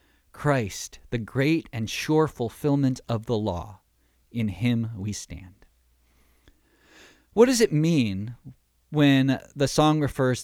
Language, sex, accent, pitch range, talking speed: English, male, American, 100-145 Hz, 120 wpm